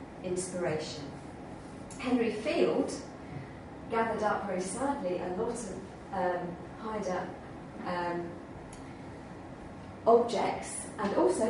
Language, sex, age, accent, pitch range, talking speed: English, female, 40-59, British, 185-230 Hz, 85 wpm